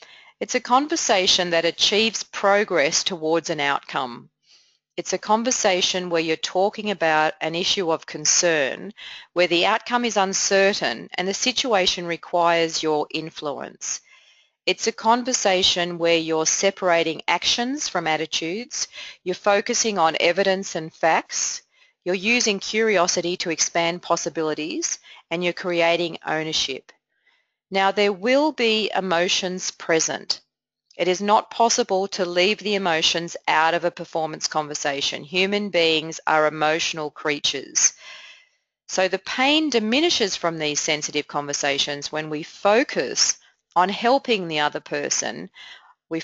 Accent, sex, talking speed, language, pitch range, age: Australian, female, 125 wpm, English, 160-205 Hz, 40-59